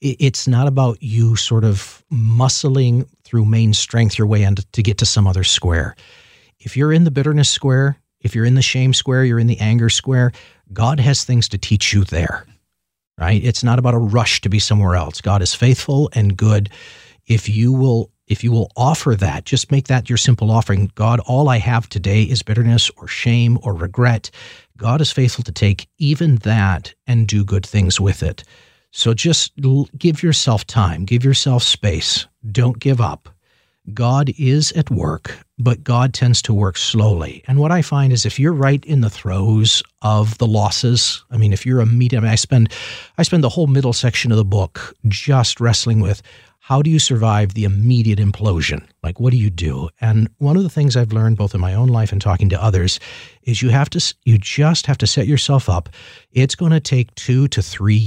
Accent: American